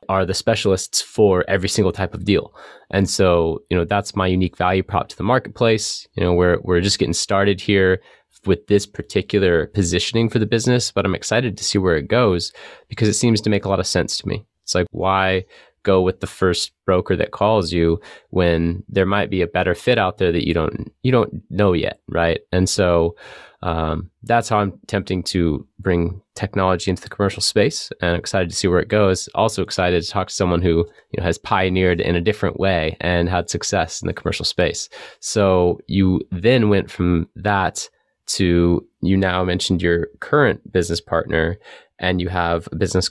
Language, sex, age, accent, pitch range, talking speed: English, male, 20-39, American, 85-100 Hz, 200 wpm